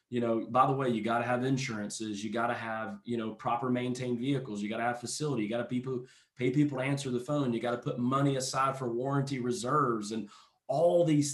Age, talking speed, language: 20-39, 245 wpm, English